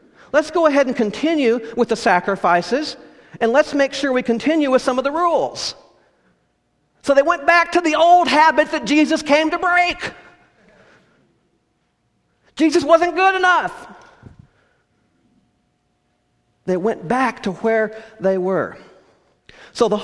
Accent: American